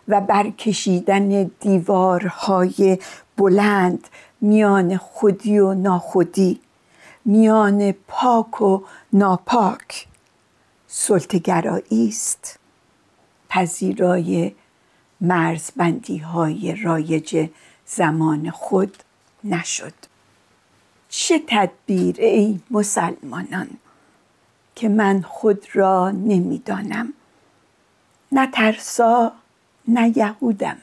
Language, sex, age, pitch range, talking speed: Persian, female, 50-69, 185-220 Hz, 60 wpm